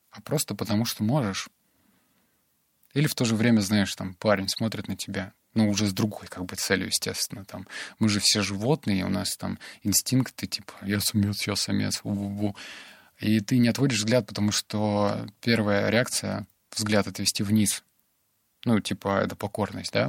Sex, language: male, Russian